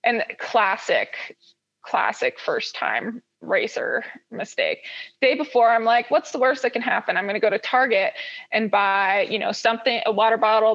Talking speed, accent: 165 wpm, American